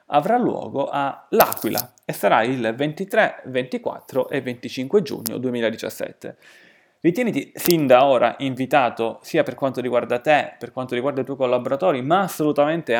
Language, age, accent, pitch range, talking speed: Italian, 30-49, native, 125-160 Hz, 145 wpm